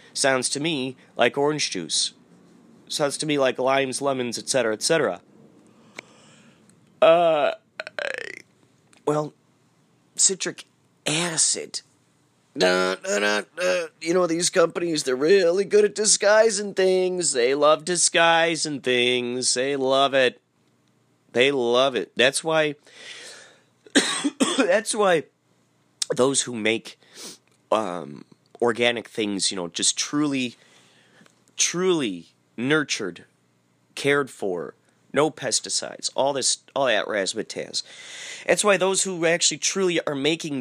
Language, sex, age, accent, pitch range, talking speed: English, male, 30-49, American, 120-180 Hz, 105 wpm